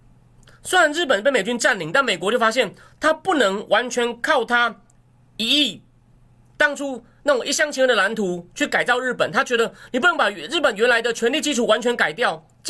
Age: 30-49